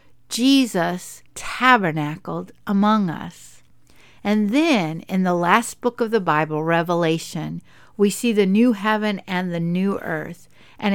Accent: American